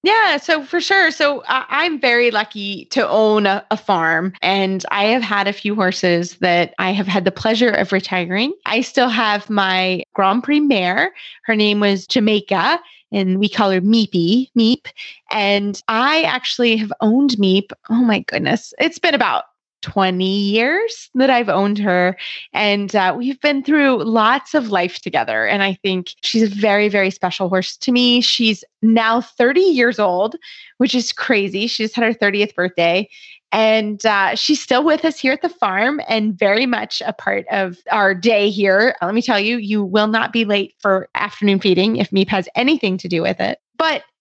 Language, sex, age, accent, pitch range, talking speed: English, female, 20-39, American, 195-250 Hz, 185 wpm